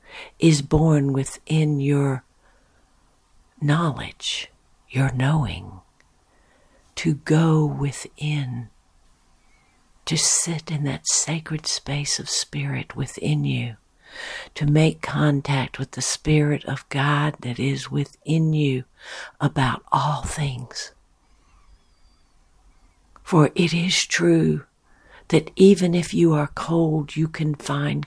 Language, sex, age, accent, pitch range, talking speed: English, female, 60-79, American, 115-155 Hz, 105 wpm